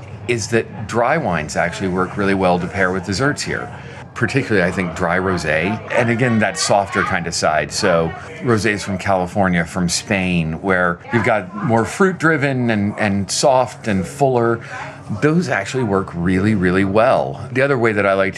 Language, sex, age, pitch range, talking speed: English, male, 40-59, 90-120 Hz, 175 wpm